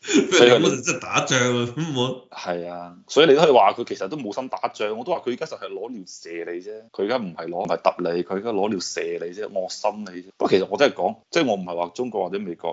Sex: male